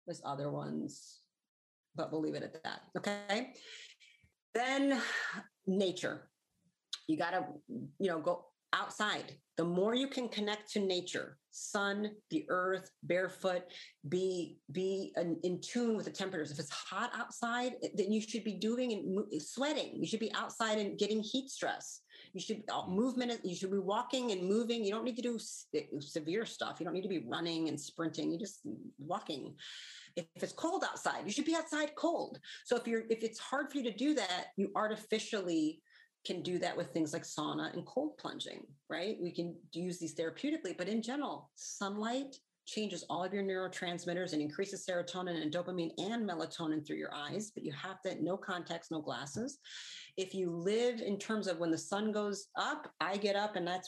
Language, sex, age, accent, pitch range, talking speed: Dutch, female, 40-59, American, 175-230 Hz, 185 wpm